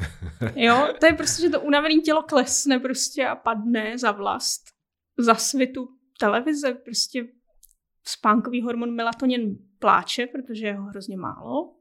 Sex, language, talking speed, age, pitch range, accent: female, Czech, 135 wpm, 20-39, 225-265 Hz, native